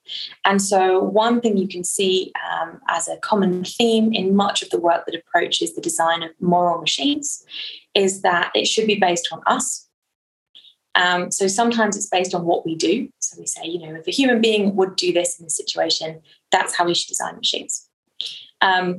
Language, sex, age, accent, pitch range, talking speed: English, female, 20-39, British, 175-235 Hz, 200 wpm